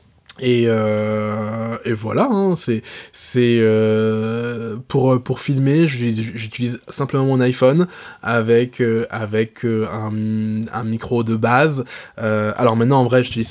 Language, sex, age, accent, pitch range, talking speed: English, male, 20-39, French, 115-140 Hz, 130 wpm